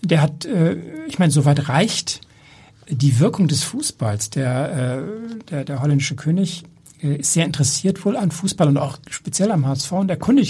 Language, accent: German, German